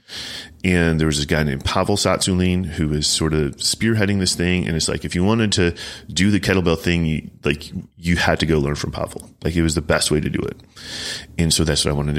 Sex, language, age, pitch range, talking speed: male, English, 30-49, 80-100 Hz, 240 wpm